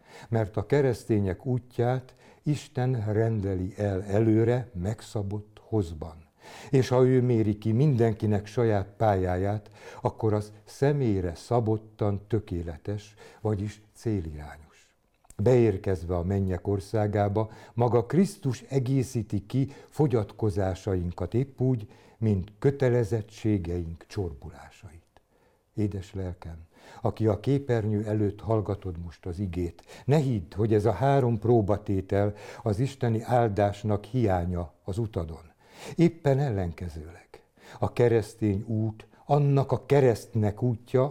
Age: 60-79